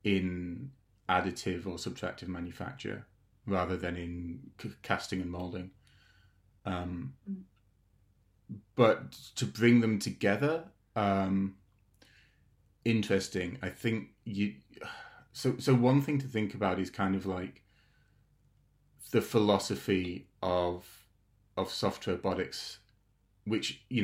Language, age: English, 30-49